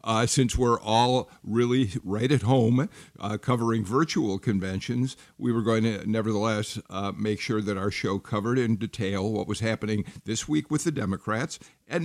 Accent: American